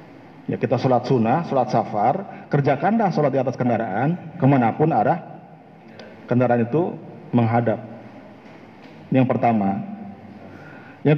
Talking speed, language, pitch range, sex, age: 105 wpm, Malay, 135-175 Hz, male, 50-69